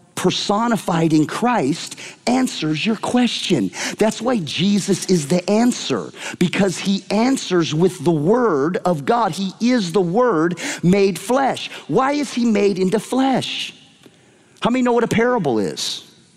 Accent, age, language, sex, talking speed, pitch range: American, 40-59, English, male, 145 wpm, 170-230 Hz